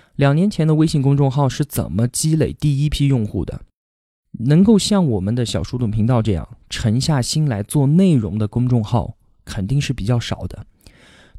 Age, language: 20-39, Chinese